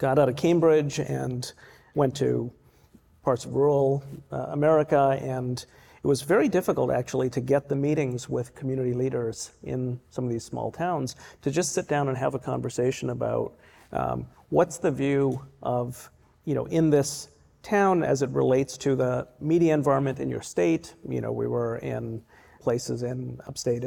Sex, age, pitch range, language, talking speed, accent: male, 40-59, 125-145 Hz, English, 170 wpm, American